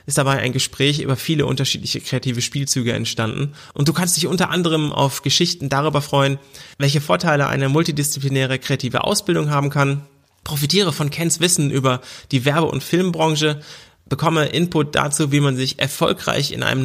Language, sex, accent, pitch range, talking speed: German, male, German, 135-155 Hz, 165 wpm